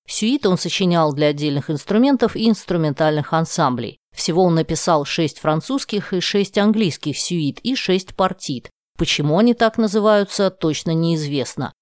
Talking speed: 135 wpm